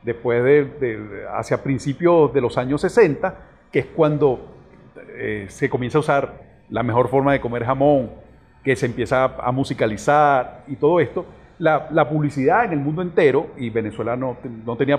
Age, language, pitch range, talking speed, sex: 40-59, Spanish, 125-165 Hz, 175 wpm, male